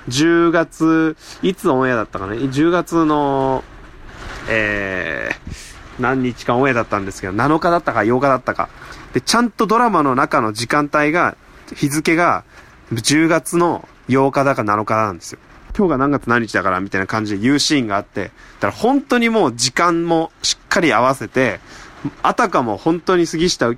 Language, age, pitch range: Japanese, 20-39, 105-170 Hz